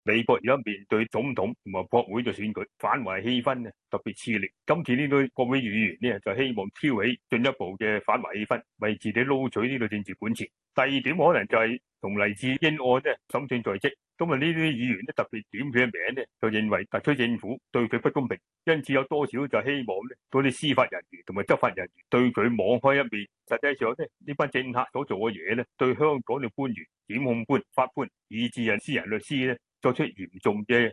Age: 30-49